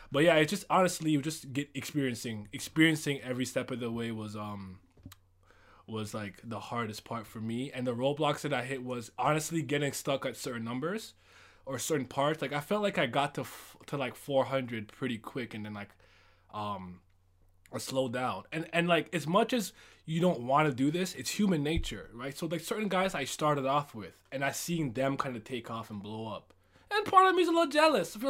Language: English